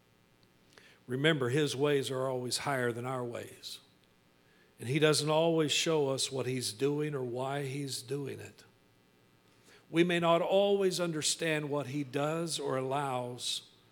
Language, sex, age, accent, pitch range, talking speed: English, male, 50-69, American, 115-145 Hz, 140 wpm